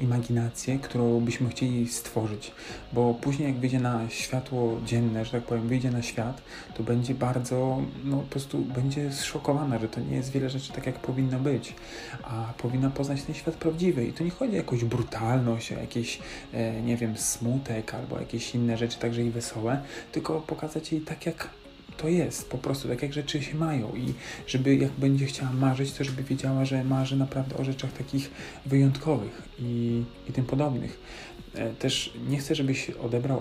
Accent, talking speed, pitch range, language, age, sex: native, 180 wpm, 115-135 Hz, Polish, 40-59, male